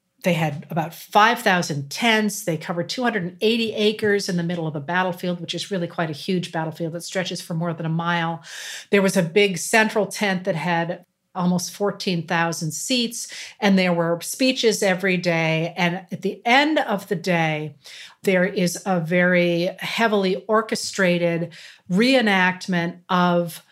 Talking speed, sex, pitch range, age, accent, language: 155 wpm, female, 175-210 Hz, 50-69, American, English